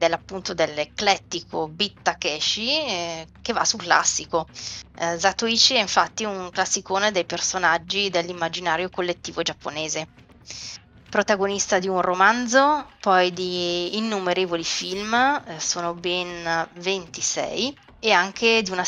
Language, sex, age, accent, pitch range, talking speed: Italian, female, 20-39, native, 165-195 Hz, 115 wpm